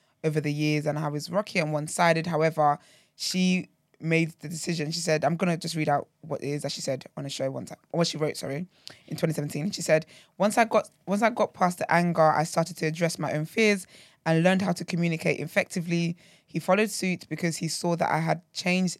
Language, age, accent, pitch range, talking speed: English, 20-39, British, 150-175 Hz, 225 wpm